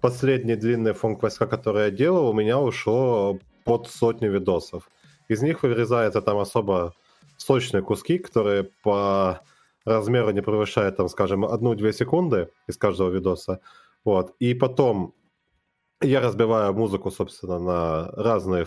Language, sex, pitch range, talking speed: Russian, male, 95-120 Hz, 130 wpm